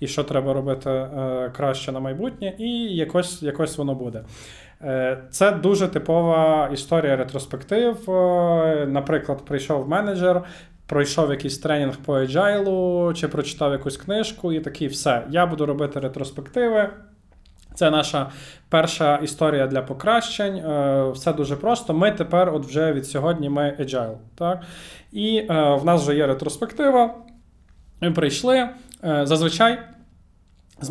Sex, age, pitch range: male, 20-39, 140-180 Hz